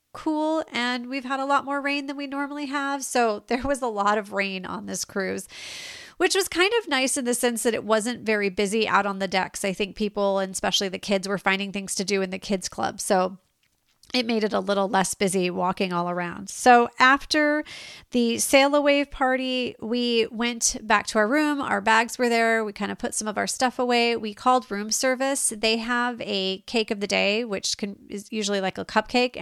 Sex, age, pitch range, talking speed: female, 30-49, 200-255 Hz, 220 wpm